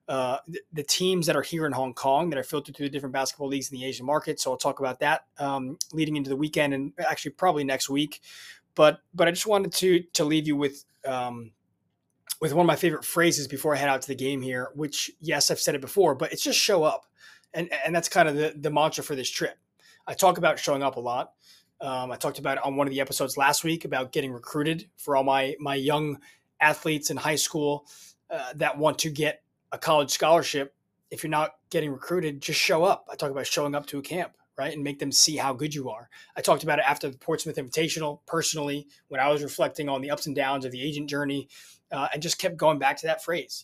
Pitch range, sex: 135-155 Hz, male